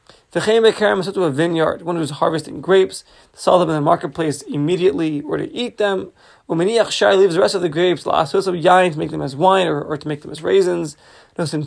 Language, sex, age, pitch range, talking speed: English, male, 30-49, 160-195 Hz, 220 wpm